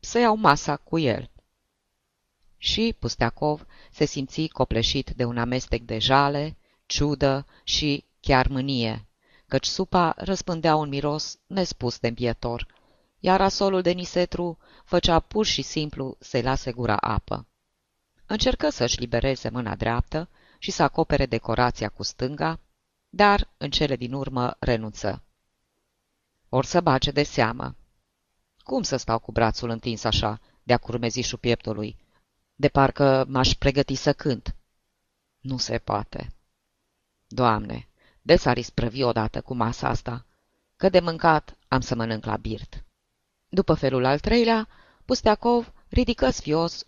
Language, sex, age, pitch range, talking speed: Romanian, female, 20-39, 115-155 Hz, 130 wpm